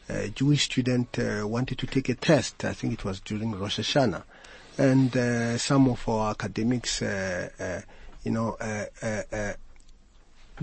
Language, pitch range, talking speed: English, 115-150 Hz, 165 wpm